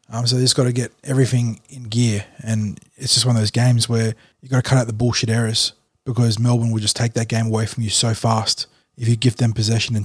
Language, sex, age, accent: English, male, 20-39, Australian